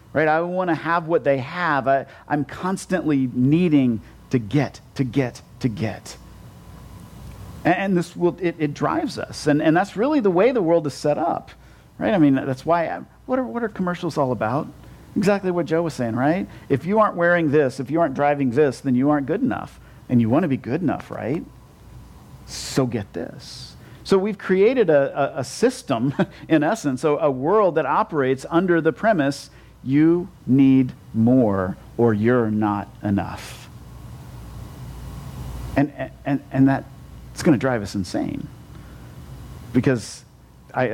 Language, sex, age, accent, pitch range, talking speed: German, male, 50-69, American, 125-160 Hz, 170 wpm